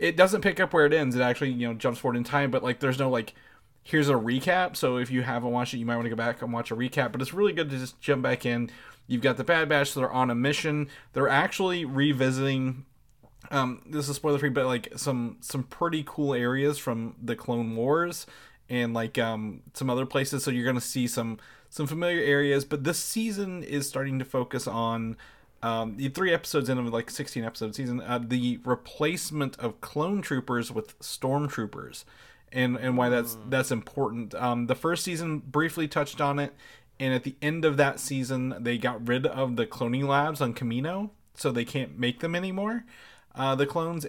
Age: 20-39